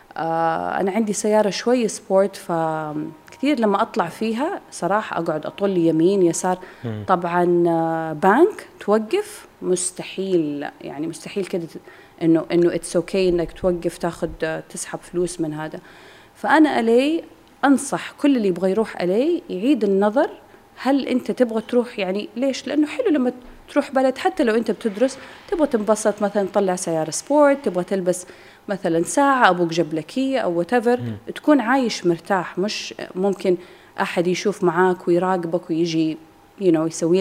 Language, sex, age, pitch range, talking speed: Arabic, female, 30-49, 170-230 Hz, 135 wpm